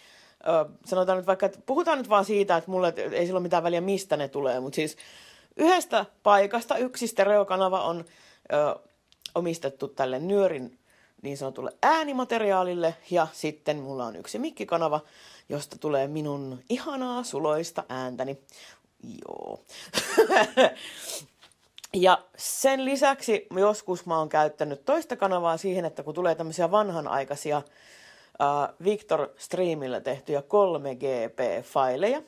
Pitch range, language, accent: 150-210 Hz, Finnish, native